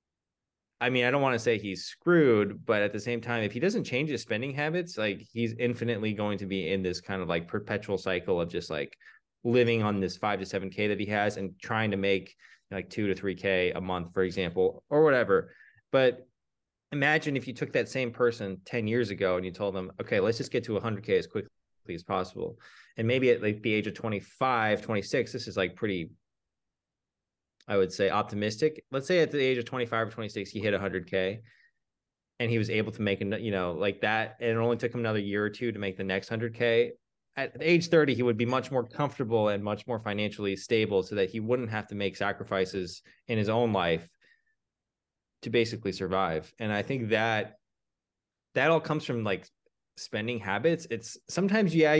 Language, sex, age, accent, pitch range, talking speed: English, male, 20-39, American, 100-125 Hz, 220 wpm